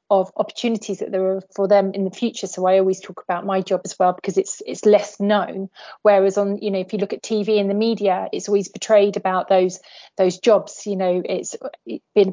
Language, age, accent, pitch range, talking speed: English, 30-49, British, 190-215 Hz, 235 wpm